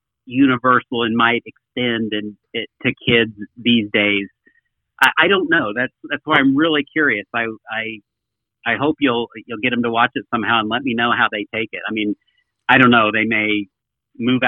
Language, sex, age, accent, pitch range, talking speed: English, male, 50-69, American, 110-160 Hz, 200 wpm